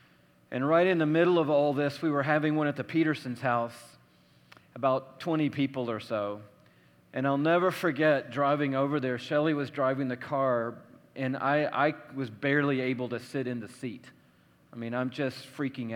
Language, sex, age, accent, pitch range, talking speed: English, male, 40-59, American, 125-160 Hz, 185 wpm